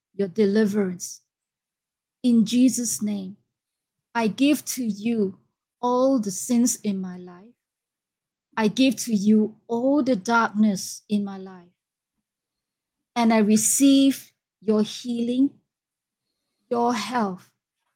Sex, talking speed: female, 105 wpm